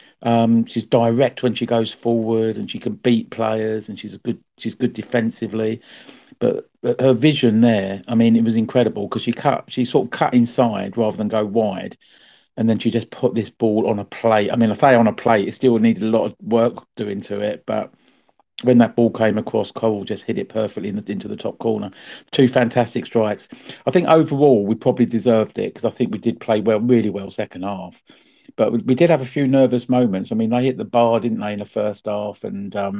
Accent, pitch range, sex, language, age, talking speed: British, 110-125 Hz, male, English, 50-69, 230 wpm